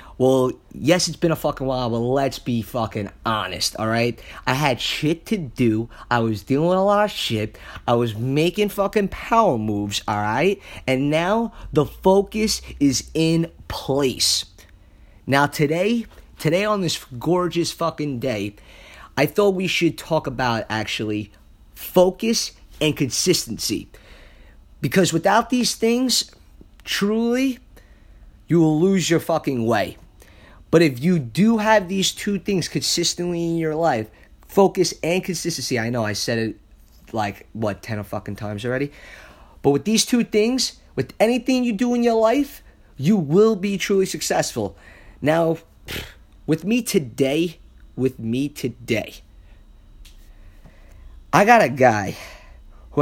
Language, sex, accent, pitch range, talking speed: English, male, American, 110-185 Hz, 145 wpm